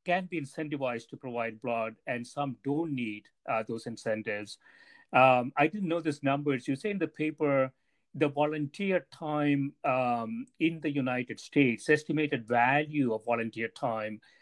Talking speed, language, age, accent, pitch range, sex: 160 wpm, English, 50-69, Indian, 120-150 Hz, male